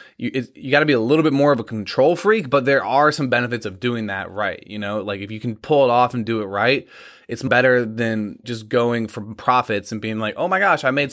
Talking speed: 275 wpm